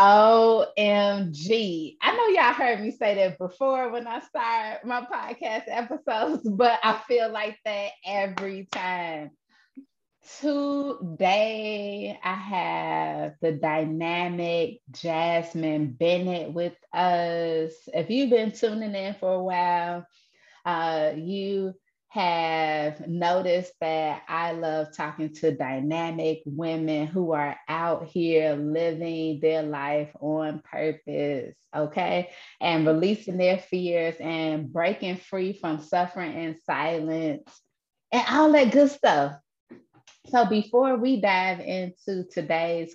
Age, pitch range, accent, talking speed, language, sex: 20-39, 160-215 Hz, American, 115 wpm, English, female